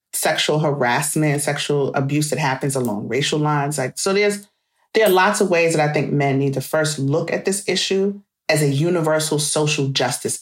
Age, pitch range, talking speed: 40-59, 140-175 Hz, 190 wpm